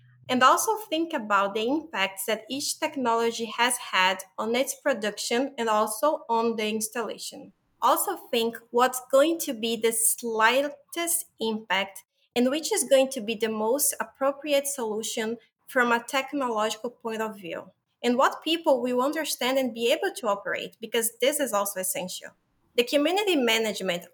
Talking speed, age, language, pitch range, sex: 155 wpm, 20-39, English, 215-280 Hz, female